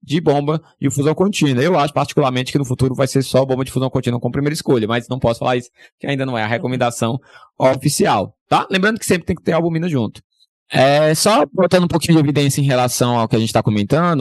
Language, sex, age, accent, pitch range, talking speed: Portuguese, male, 20-39, Brazilian, 125-155 Hz, 250 wpm